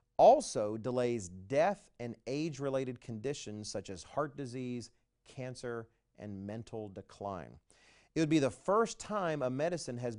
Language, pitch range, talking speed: English, 110-150 Hz, 135 wpm